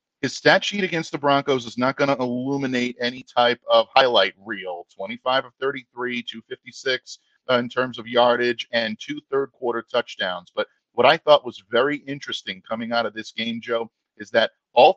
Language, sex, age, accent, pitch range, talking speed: English, male, 40-59, American, 115-140 Hz, 180 wpm